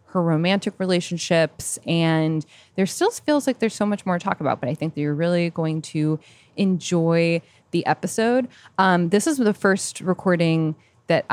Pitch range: 155-200 Hz